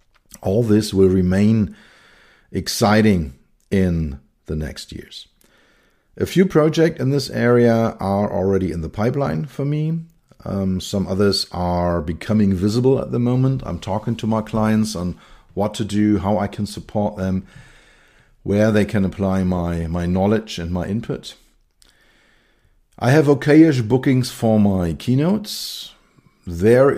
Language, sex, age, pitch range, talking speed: English, male, 50-69, 90-115 Hz, 140 wpm